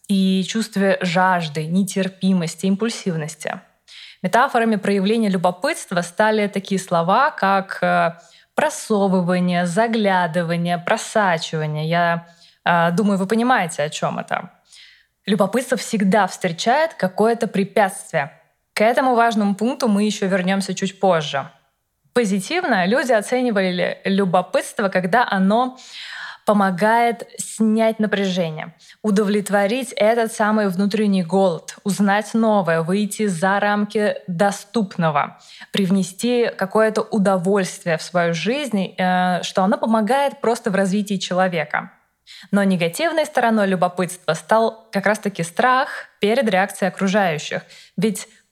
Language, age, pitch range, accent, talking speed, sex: Russian, 20-39, 185-225 Hz, native, 100 wpm, female